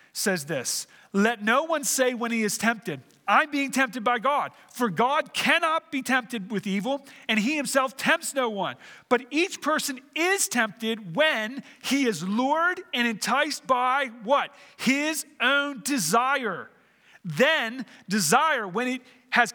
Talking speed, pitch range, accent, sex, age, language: 150 wpm, 185-270 Hz, American, male, 40-59, English